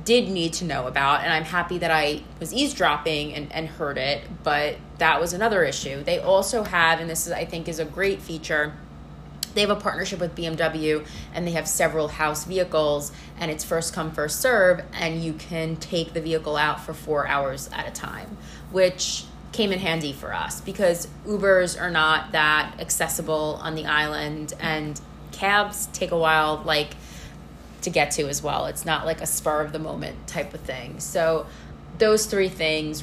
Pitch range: 150-175 Hz